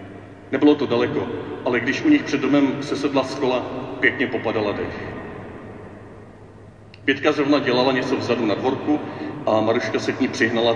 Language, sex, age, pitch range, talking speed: Czech, male, 40-59, 110-130 Hz, 155 wpm